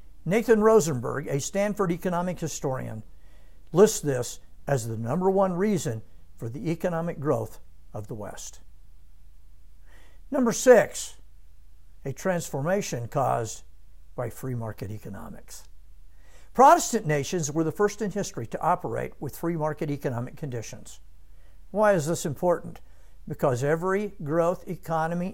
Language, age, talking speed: English, 60-79, 120 wpm